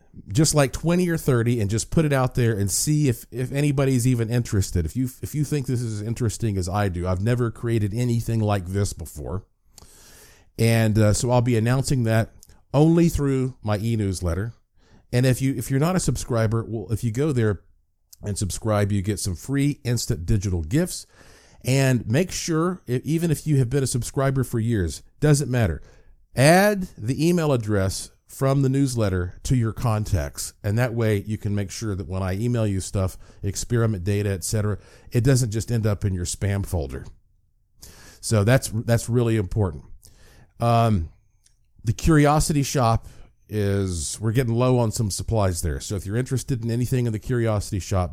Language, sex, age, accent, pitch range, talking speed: English, male, 40-59, American, 100-130 Hz, 180 wpm